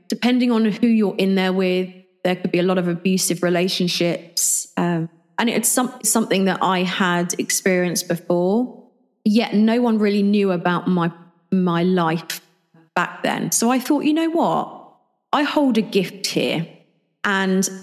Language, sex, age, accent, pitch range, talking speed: English, female, 30-49, British, 175-215 Hz, 160 wpm